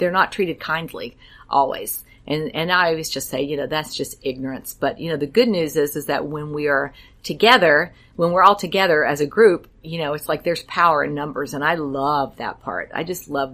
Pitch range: 140-170 Hz